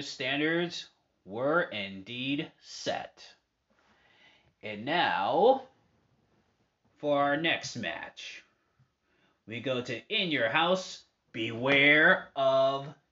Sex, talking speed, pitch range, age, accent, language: male, 80 wpm, 110-145 Hz, 30-49, American, English